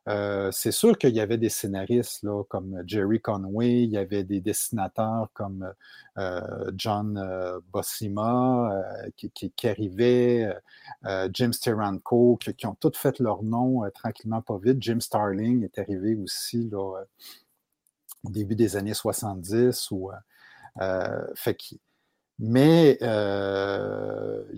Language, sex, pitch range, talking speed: French, male, 105-130 Hz, 140 wpm